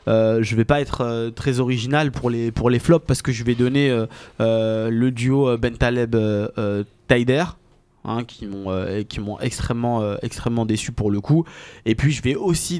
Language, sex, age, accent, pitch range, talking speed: French, male, 20-39, French, 110-130 Hz, 205 wpm